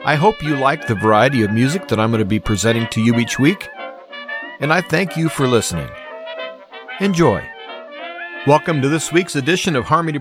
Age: 40-59